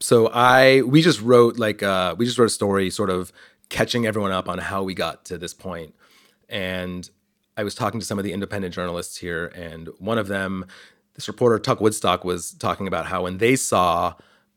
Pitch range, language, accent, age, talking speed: 95-125 Hz, English, American, 30-49, 205 wpm